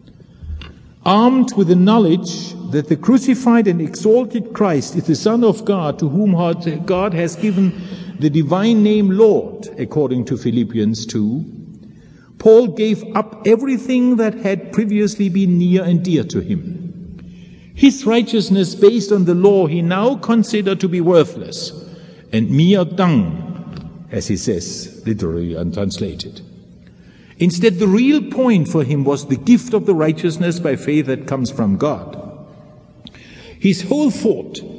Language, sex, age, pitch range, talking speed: English, male, 50-69, 135-205 Hz, 140 wpm